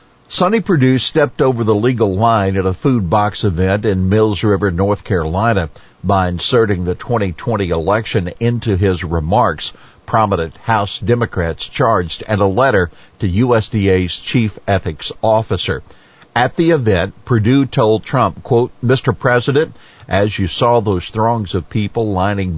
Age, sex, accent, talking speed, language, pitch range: 50-69, male, American, 145 wpm, English, 95-120 Hz